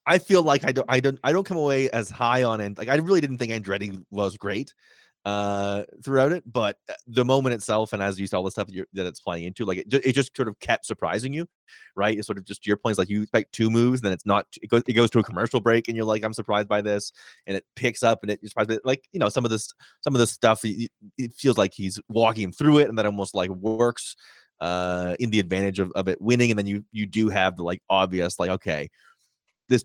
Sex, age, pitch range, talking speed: male, 20-39, 95-120 Hz, 270 wpm